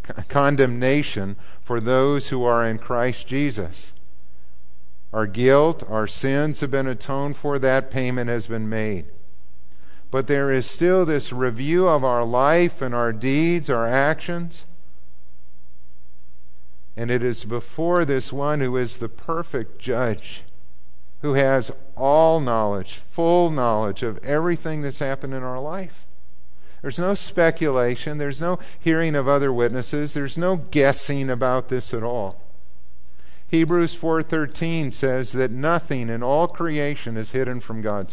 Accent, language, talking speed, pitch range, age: American, English, 140 wpm, 95-145 Hz, 50-69